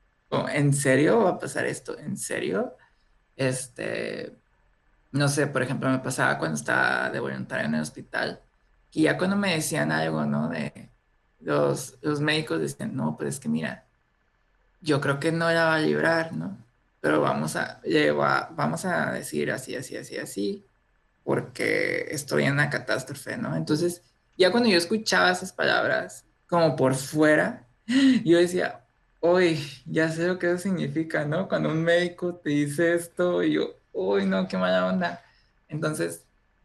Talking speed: 160 wpm